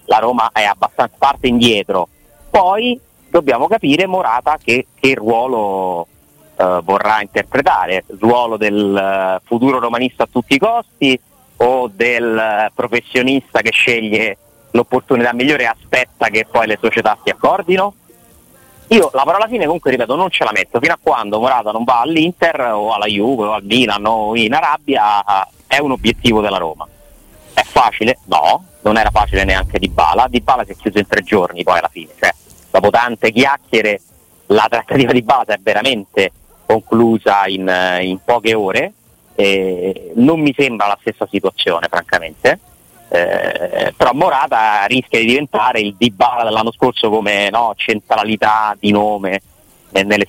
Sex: male